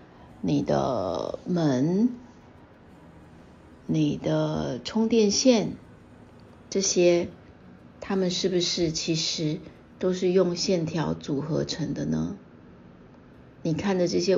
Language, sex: Chinese, female